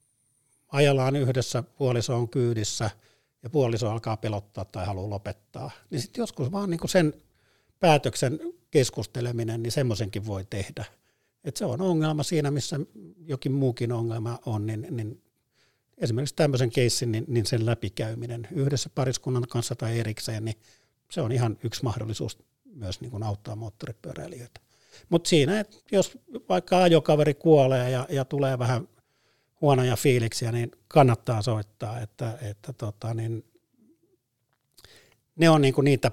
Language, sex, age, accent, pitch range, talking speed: Finnish, male, 50-69, native, 115-140 Hz, 125 wpm